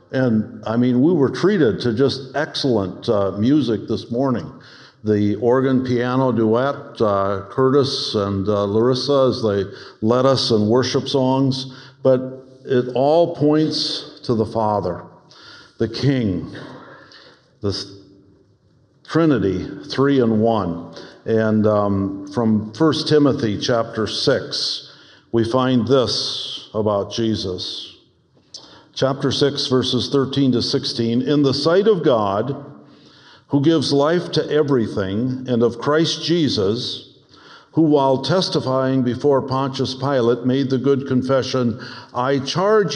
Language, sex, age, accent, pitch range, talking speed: English, male, 50-69, American, 115-140 Hz, 120 wpm